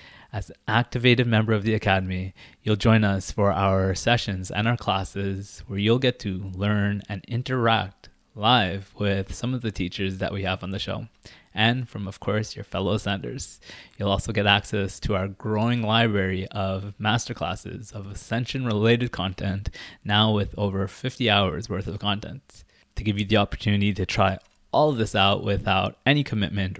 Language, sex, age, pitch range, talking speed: English, male, 20-39, 95-115 Hz, 170 wpm